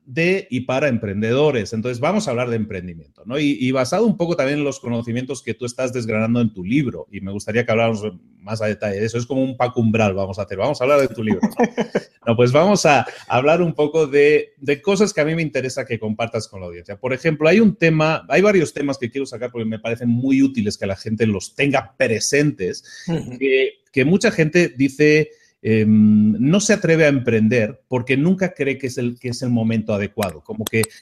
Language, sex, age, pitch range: Spanish, male, 30-49, 115-155 Hz